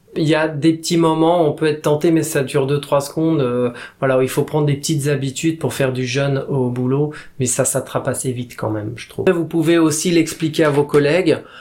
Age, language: 20-39, French